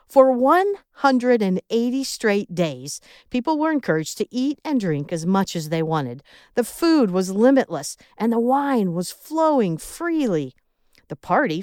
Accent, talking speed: American, 145 wpm